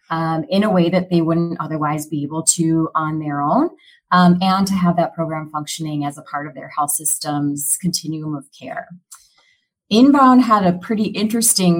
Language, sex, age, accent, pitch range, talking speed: English, female, 30-49, American, 155-180 Hz, 185 wpm